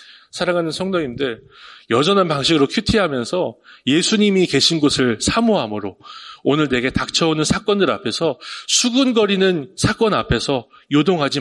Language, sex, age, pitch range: Korean, male, 30-49, 135-195 Hz